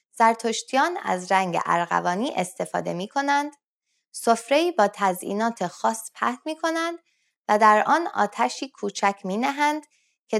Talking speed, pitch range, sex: 115 wpm, 185-290 Hz, female